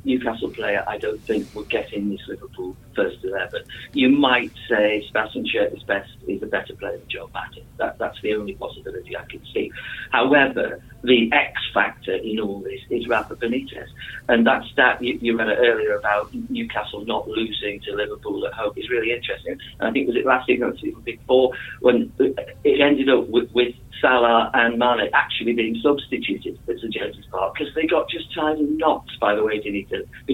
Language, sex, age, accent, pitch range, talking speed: English, male, 40-59, British, 110-170 Hz, 195 wpm